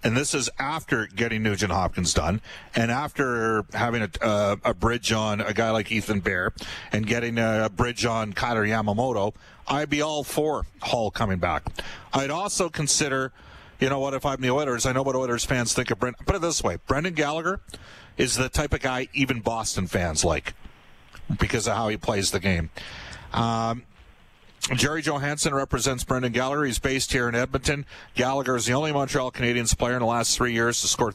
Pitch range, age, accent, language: 110-135 Hz, 40-59, American, English